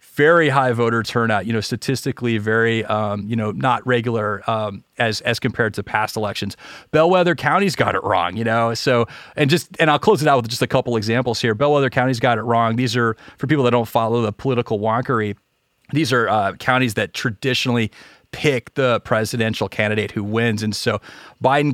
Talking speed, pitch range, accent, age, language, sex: 195 wpm, 110-135 Hz, American, 30-49, English, male